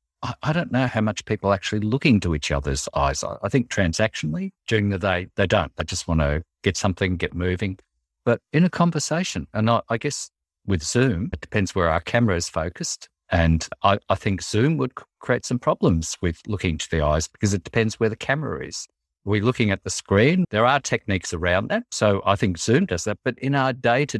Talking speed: 220 wpm